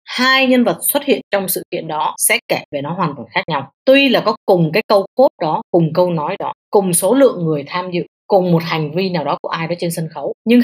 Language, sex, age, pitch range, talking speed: Vietnamese, female, 20-39, 170-235 Hz, 270 wpm